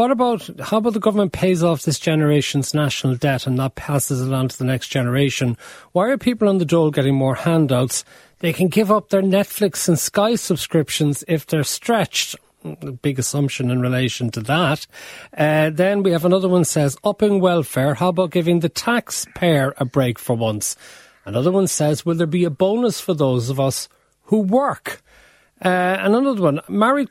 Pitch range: 135-195 Hz